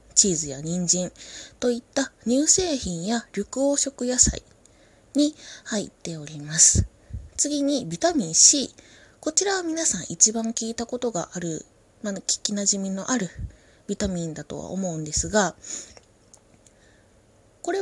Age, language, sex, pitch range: 20-39, Japanese, female, 165-255 Hz